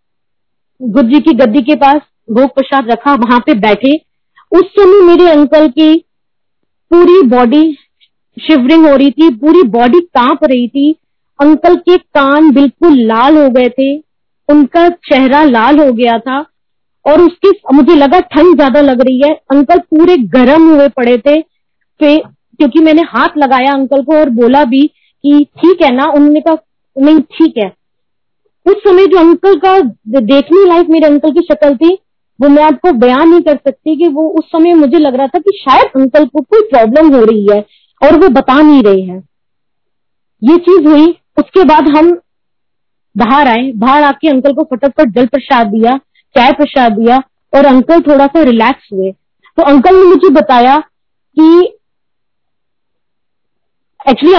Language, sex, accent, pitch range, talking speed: Hindi, female, native, 270-330 Hz, 160 wpm